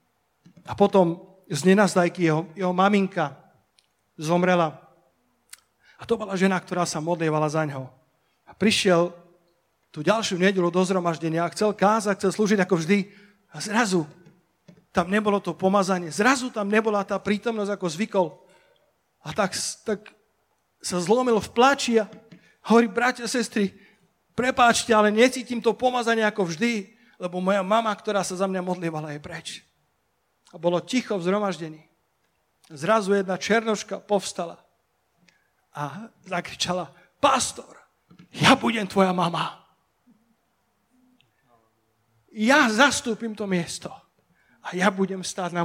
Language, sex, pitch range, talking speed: Slovak, male, 175-225 Hz, 125 wpm